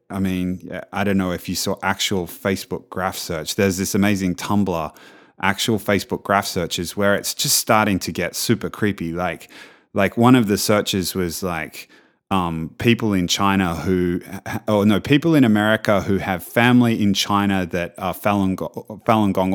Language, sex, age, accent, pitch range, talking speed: English, male, 20-39, Australian, 95-115 Hz, 180 wpm